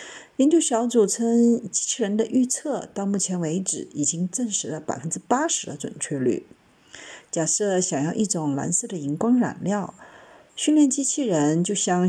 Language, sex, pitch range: Chinese, female, 165-245 Hz